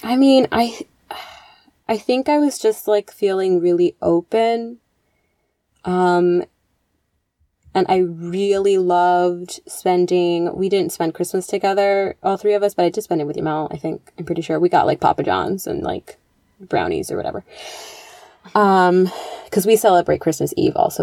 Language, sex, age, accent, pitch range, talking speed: English, female, 20-39, American, 160-205 Hz, 160 wpm